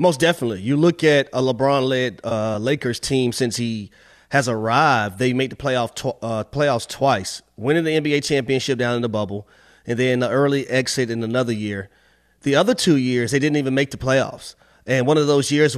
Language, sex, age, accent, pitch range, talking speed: English, male, 30-49, American, 130-170 Hz, 190 wpm